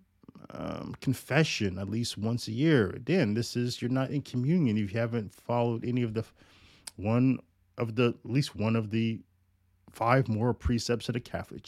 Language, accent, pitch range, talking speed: English, American, 100-120 Hz, 180 wpm